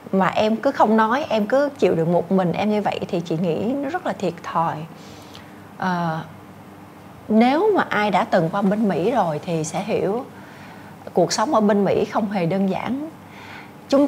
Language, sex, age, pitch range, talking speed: Vietnamese, female, 20-39, 180-235 Hz, 190 wpm